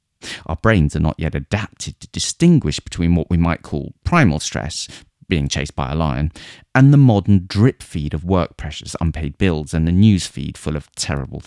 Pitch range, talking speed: 75-110 Hz, 195 wpm